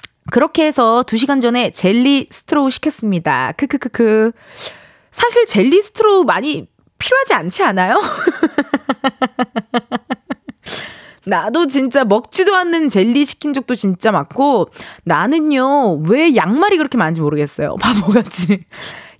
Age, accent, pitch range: 20-39, native, 195-315 Hz